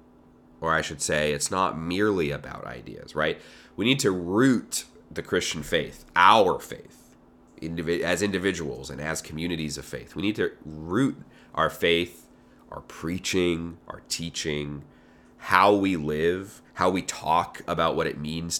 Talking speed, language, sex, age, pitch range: 150 wpm, English, male, 30-49, 75-85 Hz